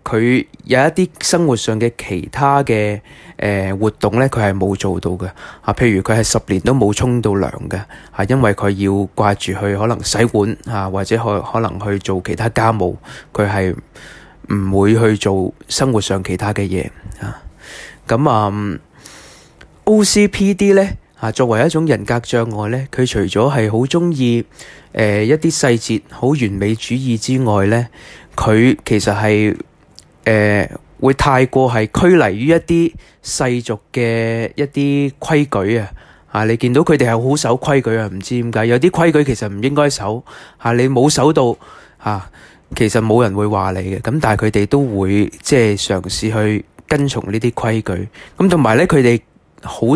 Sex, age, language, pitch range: male, 20-39, Chinese, 105-135 Hz